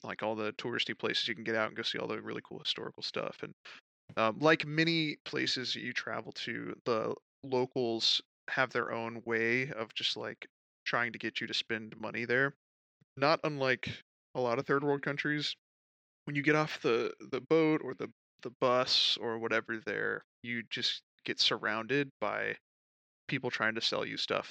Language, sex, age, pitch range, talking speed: English, male, 20-39, 110-150 Hz, 185 wpm